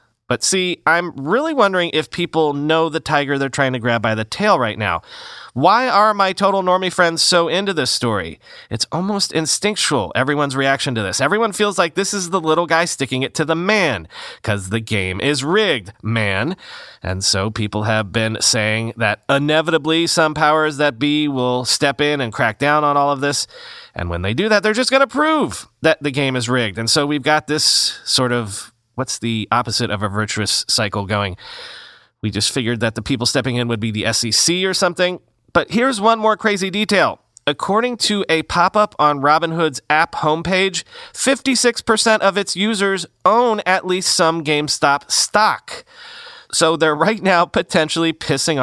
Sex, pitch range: male, 130-185 Hz